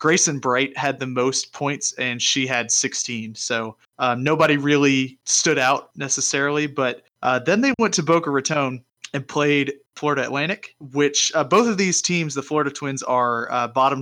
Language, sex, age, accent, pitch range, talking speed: English, male, 30-49, American, 120-145 Hz, 175 wpm